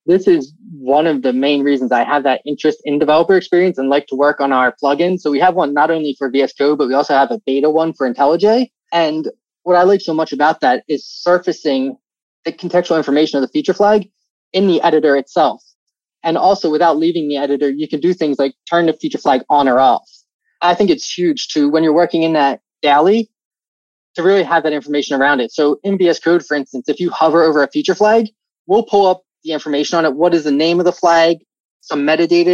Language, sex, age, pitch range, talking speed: English, male, 20-39, 145-185 Hz, 230 wpm